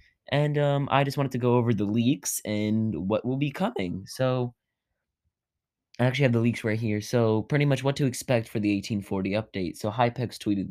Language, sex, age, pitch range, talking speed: English, male, 20-39, 105-130 Hz, 200 wpm